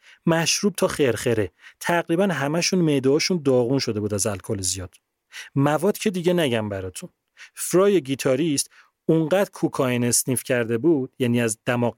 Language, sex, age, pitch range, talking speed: Persian, male, 30-49, 120-165 Hz, 140 wpm